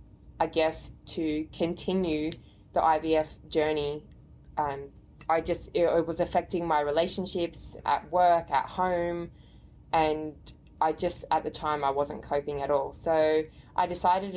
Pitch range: 155-175 Hz